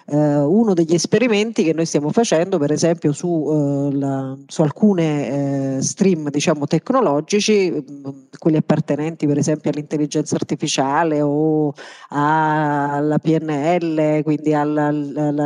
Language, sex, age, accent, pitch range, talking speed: Italian, female, 40-59, native, 155-190 Hz, 120 wpm